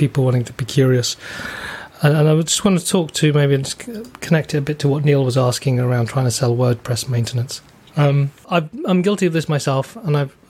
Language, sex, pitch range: English, male, 130-155 Hz